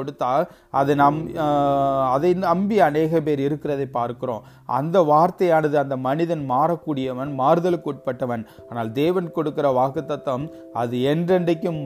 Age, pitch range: 30-49, 130-165 Hz